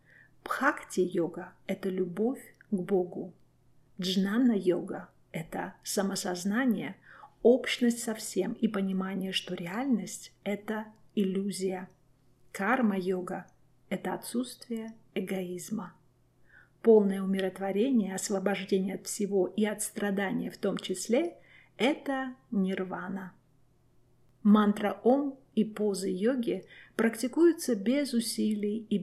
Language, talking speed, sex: Russian, 90 wpm, female